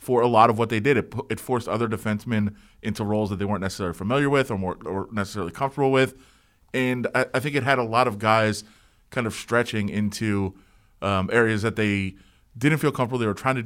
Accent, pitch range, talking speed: American, 105-130 Hz, 225 wpm